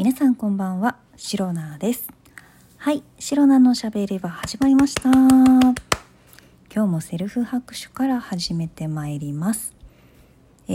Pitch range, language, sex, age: 155-230 Hz, Japanese, female, 40-59